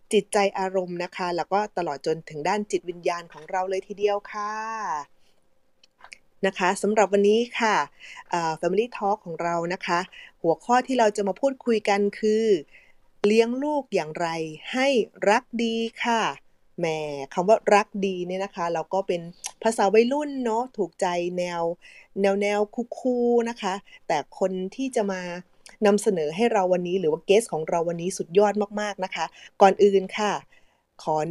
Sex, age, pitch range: female, 20-39, 180-225 Hz